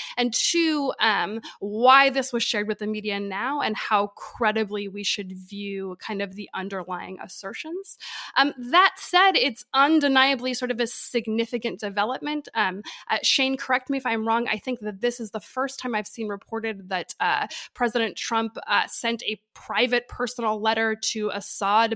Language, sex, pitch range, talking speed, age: English, female, 205-255 Hz, 170 wpm, 20-39